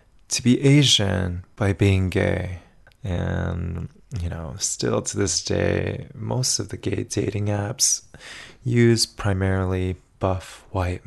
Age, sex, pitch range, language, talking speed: 20-39, male, 90-115 Hz, English, 125 wpm